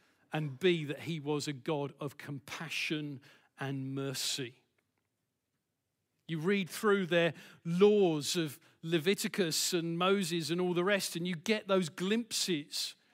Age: 50-69